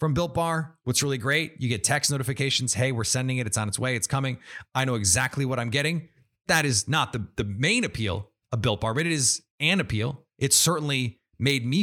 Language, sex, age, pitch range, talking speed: English, male, 30-49, 120-155 Hz, 230 wpm